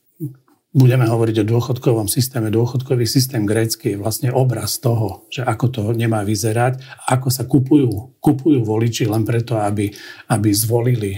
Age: 50-69